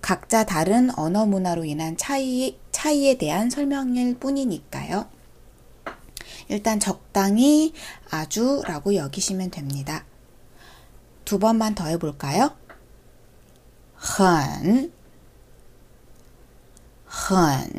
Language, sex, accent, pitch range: Korean, female, native, 170-250 Hz